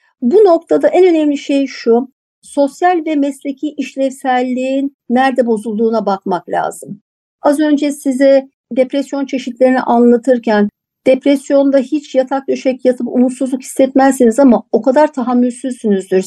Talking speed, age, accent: 115 wpm, 60-79, native